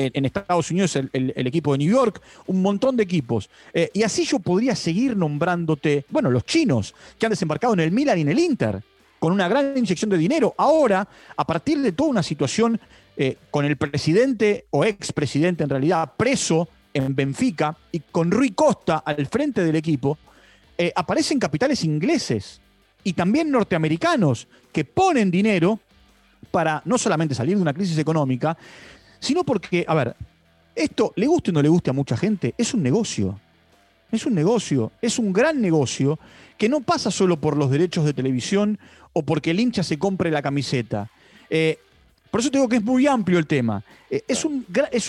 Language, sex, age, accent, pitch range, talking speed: Spanish, male, 40-59, Argentinian, 150-230 Hz, 185 wpm